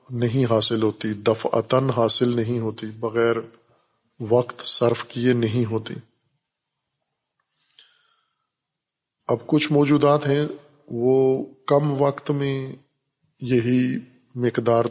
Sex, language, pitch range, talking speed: male, Urdu, 115-130 Hz, 95 wpm